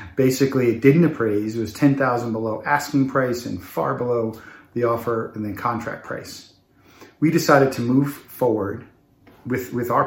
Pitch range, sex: 110-135 Hz, male